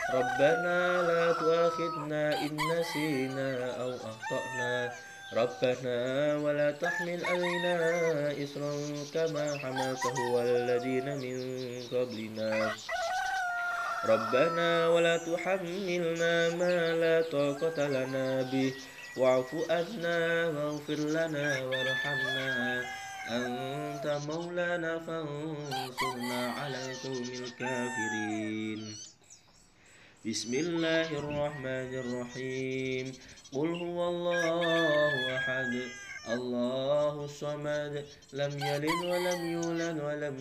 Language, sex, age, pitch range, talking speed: Indonesian, male, 20-39, 130-165 Hz, 65 wpm